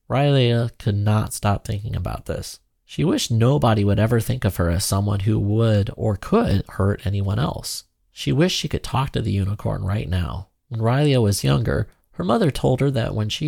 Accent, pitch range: American, 105-135 Hz